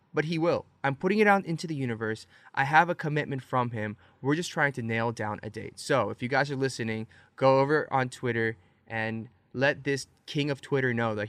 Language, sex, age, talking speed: English, male, 20-39, 225 wpm